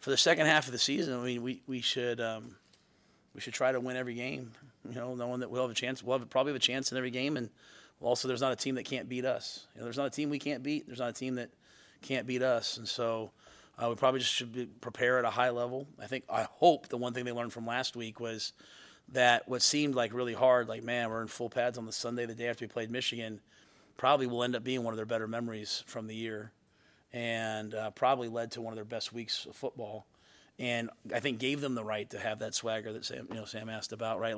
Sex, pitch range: male, 115-125 Hz